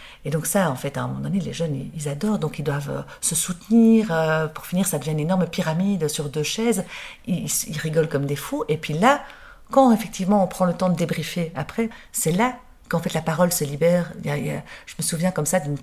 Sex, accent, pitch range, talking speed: female, French, 150-200 Hz, 240 wpm